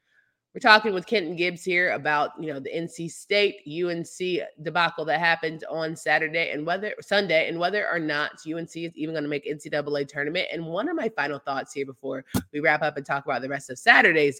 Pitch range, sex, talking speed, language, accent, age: 150-180 Hz, female, 215 wpm, English, American, 20-39